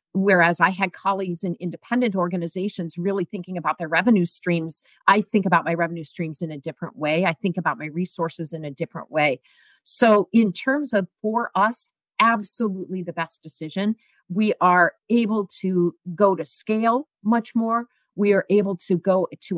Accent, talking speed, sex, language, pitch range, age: American, 175 wpm, female, English, 170-220 Hz, 50-69